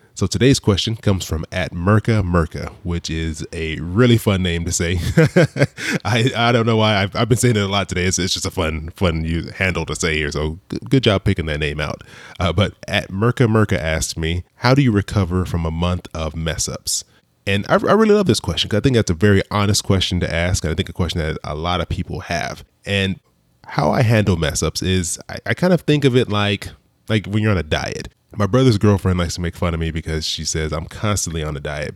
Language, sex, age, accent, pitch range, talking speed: English, male, 20-39, American, 85-110 Hz, 245 wpm